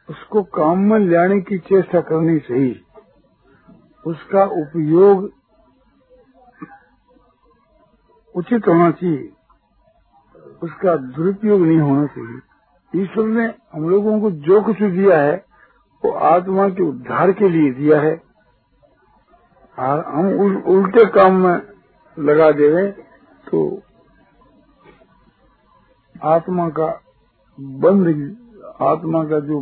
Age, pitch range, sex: 60-79, 155-200 Hz, male